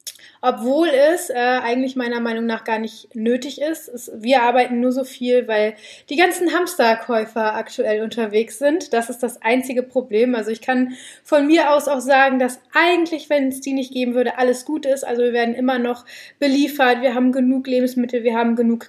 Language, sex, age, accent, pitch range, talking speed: German, female, 20-39, German, 235-265 Hz, 190 wpm